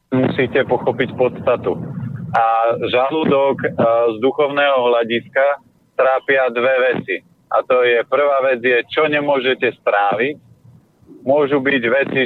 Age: 40-59